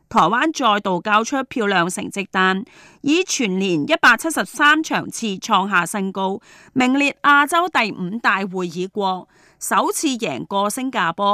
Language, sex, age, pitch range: Chinese, female, 30-49, 190-265 Hz